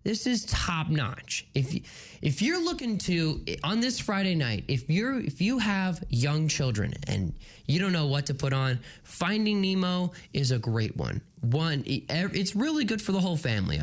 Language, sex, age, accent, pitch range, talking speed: English, male, 20-39, American, 125-190 Hz, 180 wpm